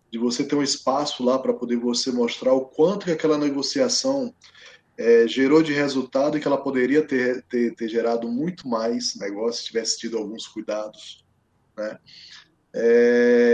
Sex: male